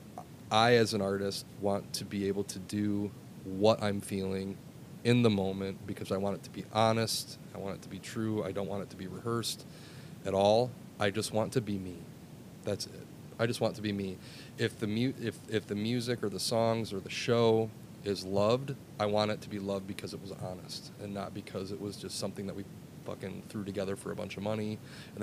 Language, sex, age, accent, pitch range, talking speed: English, male, 30-49, American, 100-110 Hz, 230 wpm